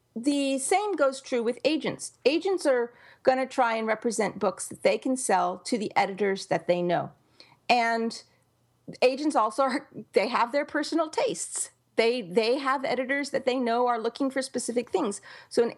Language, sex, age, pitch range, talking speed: English, female, 40-59, 210-280 Hz, 175 wpm